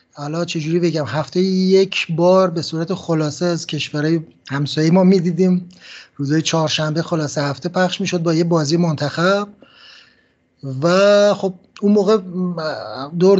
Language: Persian